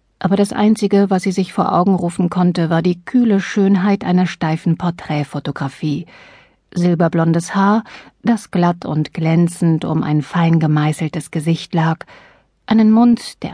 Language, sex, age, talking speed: German, female, 50-69, 140 wpm